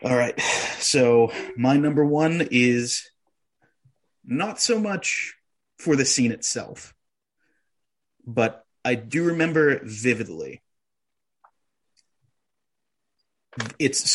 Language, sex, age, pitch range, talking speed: English, male, 30-49, 115-150 Hz, 85 wpm